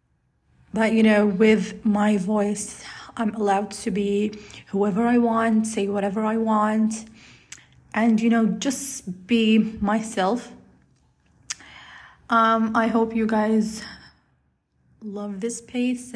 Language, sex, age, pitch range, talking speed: English, female, 20-39, 200-225 Hz, 115 wpm